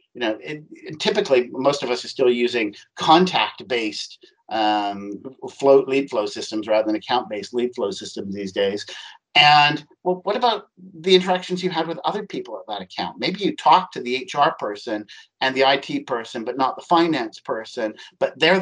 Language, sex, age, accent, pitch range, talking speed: English, male, 50-69, American, 125-180 Hz, 185 wpm